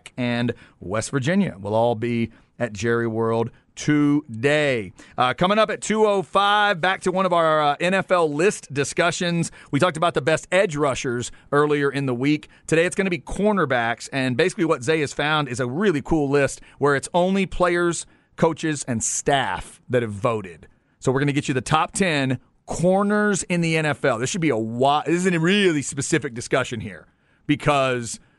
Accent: American